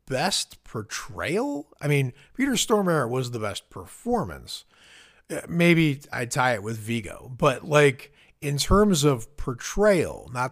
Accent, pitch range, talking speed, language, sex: American, 115-150 Hz, 130 wpm, English, male